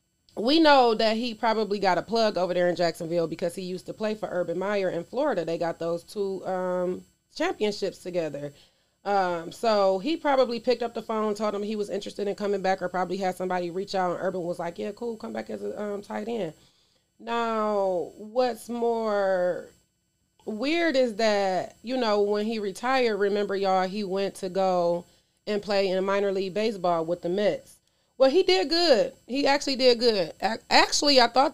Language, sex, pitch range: English, female, 180-230 Hz